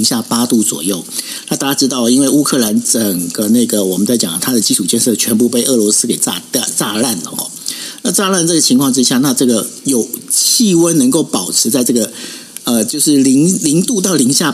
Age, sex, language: 50-69, male, Chinese